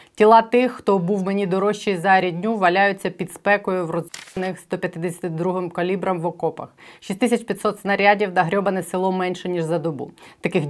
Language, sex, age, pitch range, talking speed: Ukrainian, female, 20-39, 165-195 Hz, 145 wpm